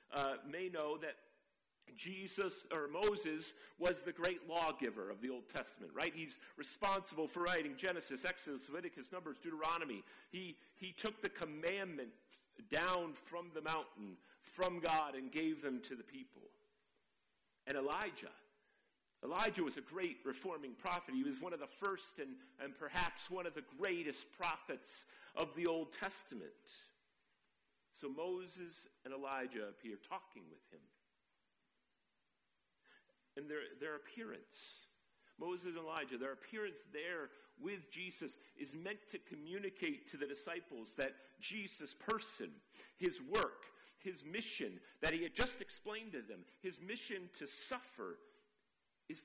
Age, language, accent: 50-69, English, American